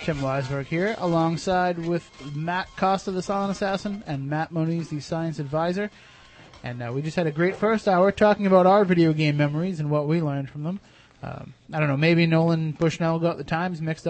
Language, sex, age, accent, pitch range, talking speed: English, male, 30-49, American, 150-185 Hz, 205 wpm